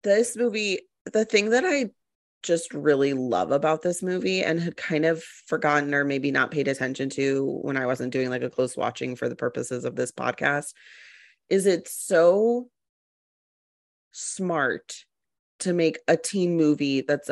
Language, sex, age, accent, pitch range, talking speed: English, female, 30-49, American, 130-170 Hz, 165 wpm